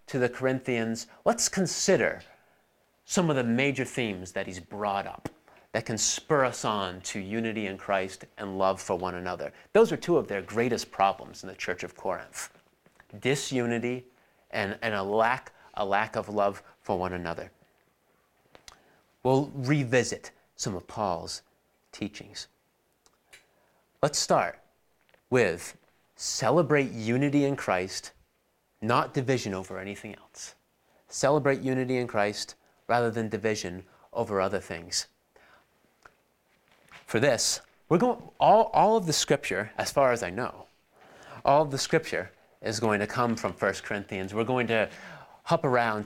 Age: 30-49